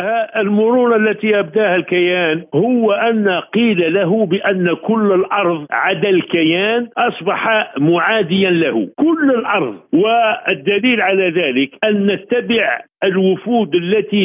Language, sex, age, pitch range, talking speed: Arabic, male, 50-69, 180-225 Hz, 105 wpm